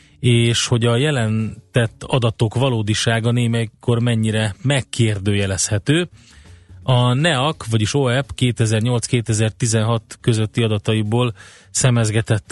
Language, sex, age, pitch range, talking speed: Hungarian, male, 30-49, 110-125 Hz, 80 wpm